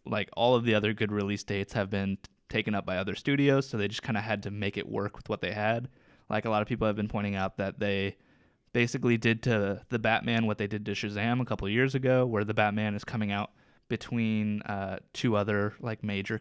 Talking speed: 250 wpm